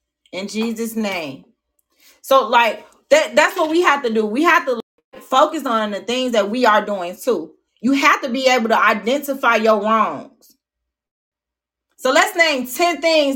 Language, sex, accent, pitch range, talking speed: English, female, American, 220-275 Hz, 170 wpm